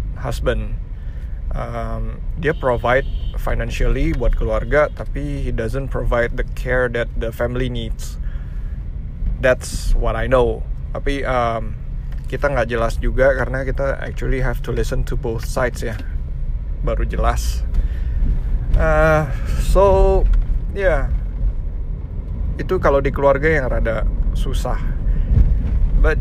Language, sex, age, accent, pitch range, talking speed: Indonesian, male, 20-39, native, 80-130 Hz, 115 wpm